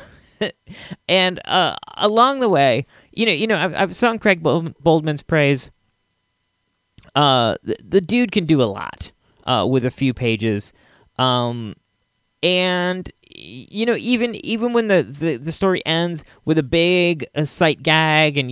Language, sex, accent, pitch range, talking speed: English, male, American, 120-175 Hz, 155 wpm